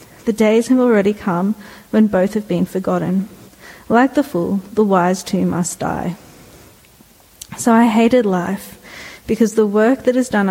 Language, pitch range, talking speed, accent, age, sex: English, 195-230 Hz, 160 wpm, Australian, 40-59, female